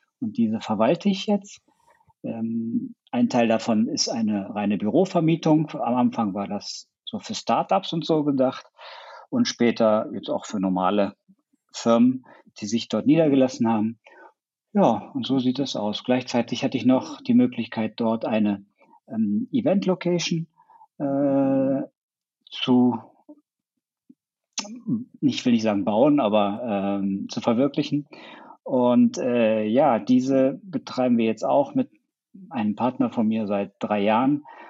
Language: German